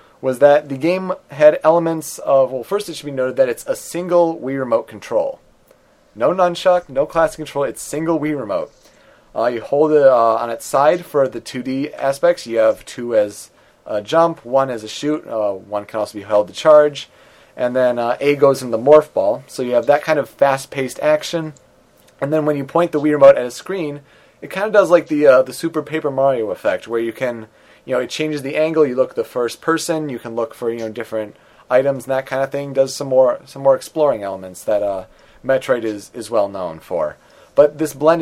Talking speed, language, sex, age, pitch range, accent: 225 wpm, English, male, 30-49, 120-160 Hz, American